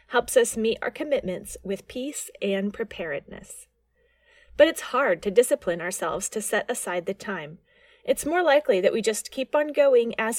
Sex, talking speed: female, 175 wpm